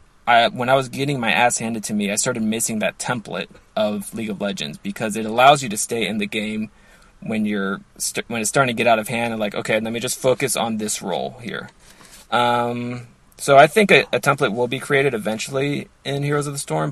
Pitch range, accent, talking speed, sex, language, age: 110-135 Hz, American, 235 wpm, male, English, 20-39